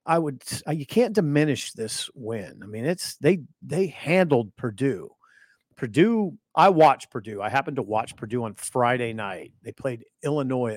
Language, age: English, 40-59